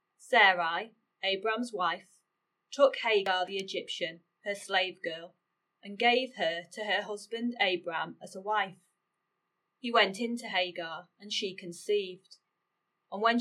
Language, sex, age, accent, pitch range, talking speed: English, female, 30-49, British, 180-240 Hz, 135 wpm